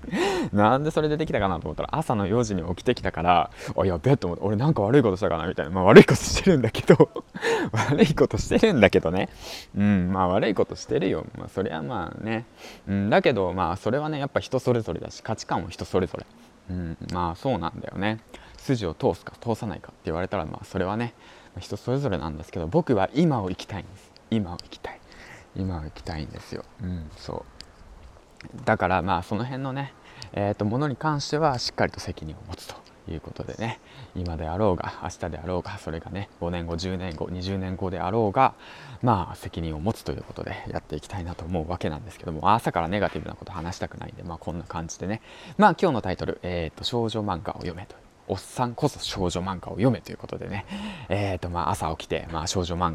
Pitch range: 90-120 Hz